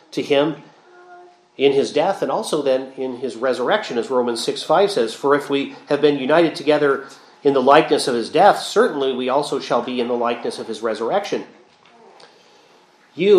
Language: English